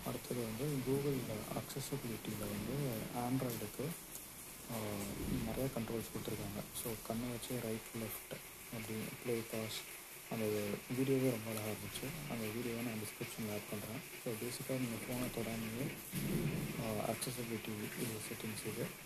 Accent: native